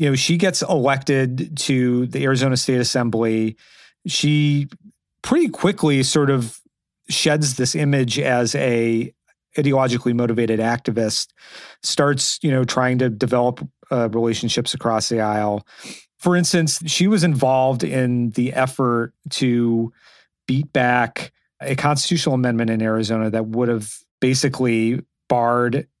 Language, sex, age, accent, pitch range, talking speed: English, male, 40-59, American, 120-140 Hz, 125 wpm